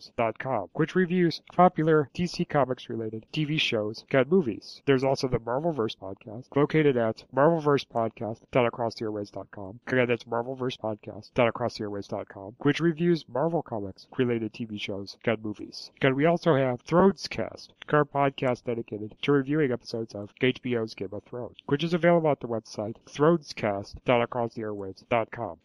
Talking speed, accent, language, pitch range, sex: 120 wpm, American, English, 110-140 Hz, male